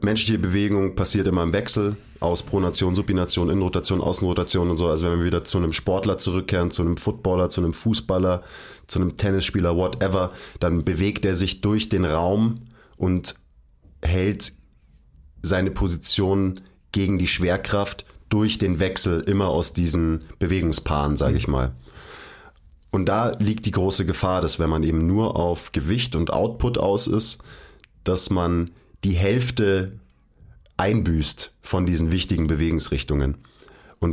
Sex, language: male, German